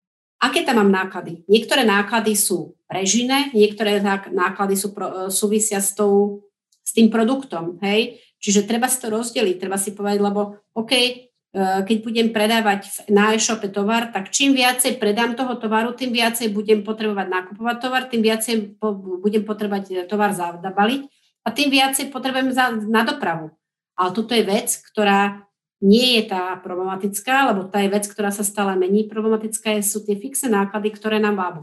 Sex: female